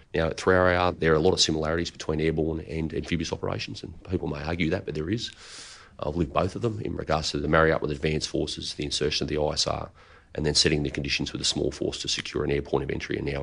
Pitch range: 75-85 Hz